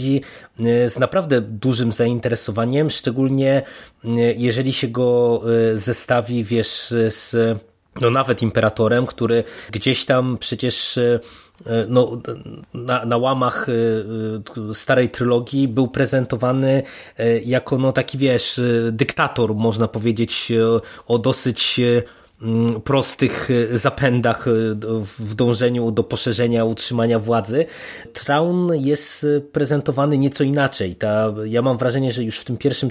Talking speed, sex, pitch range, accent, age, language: 105 wpm, male, 115-130 Hz, native, 20-39, Polish